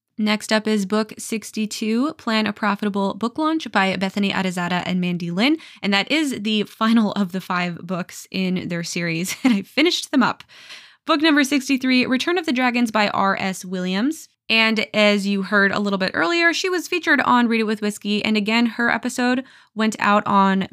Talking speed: 190 wpm